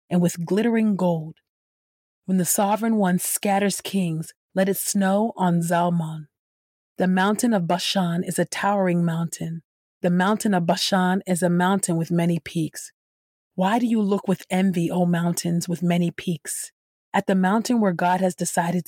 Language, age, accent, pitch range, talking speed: English, 30-49, American, 170-200 Hz, 160 wpm